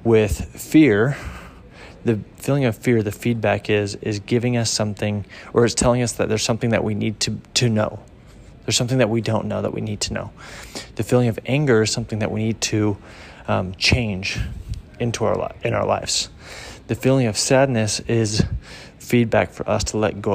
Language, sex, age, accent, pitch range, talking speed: English, male, 30-49, American, 105-120 Hz, 195 wpm